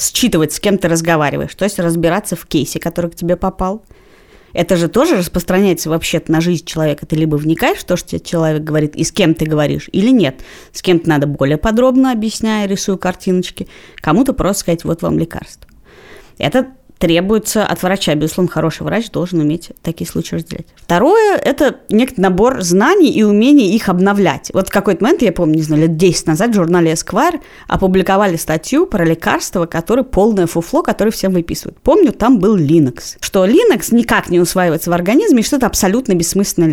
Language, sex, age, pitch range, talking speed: Russian, female, 20-39, 165-225 Hz, 180 wpm